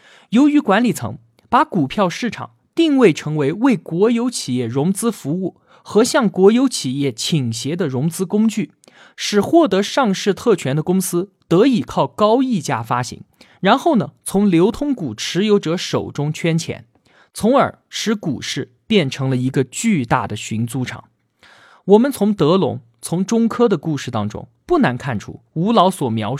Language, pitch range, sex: Chinese, 130-220 Hz, male